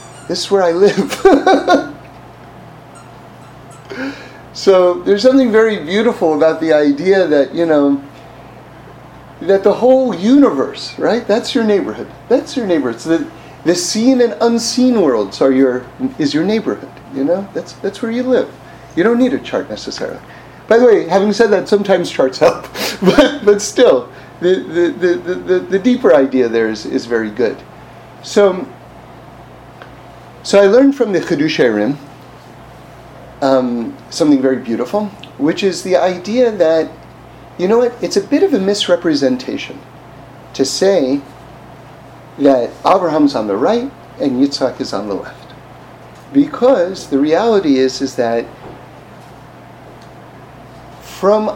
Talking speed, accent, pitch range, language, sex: 140 wpm, American, 135-215 Hz, English, male